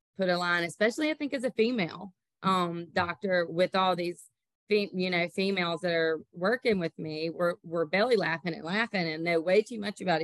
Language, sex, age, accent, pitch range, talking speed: English, female, 30-49, American, 165-205 Hz, 200 wpm